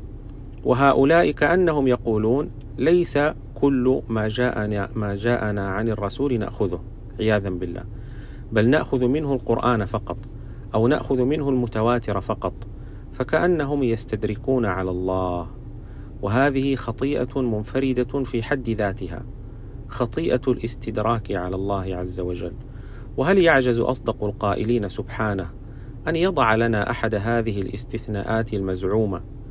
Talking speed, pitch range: 105 wpm, 105-125 Hz